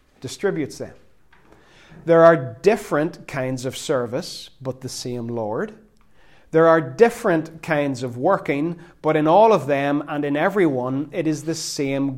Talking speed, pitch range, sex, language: 150 wpm, 150-190 Hz, male, English